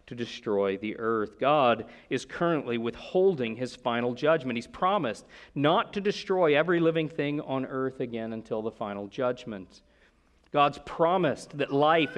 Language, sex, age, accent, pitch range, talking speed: English, male, 40-59, American, 125-165 Hz, 150 wpm